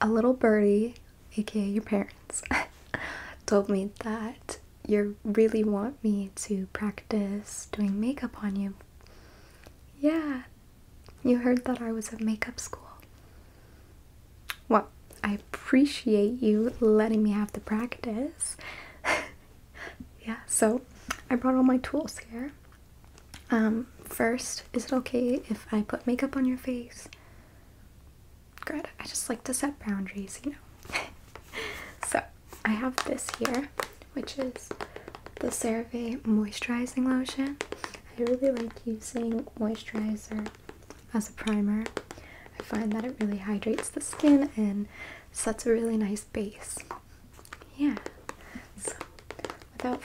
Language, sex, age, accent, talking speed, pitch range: English, female, 20-39, American, 120 wpm, 215-255 Hz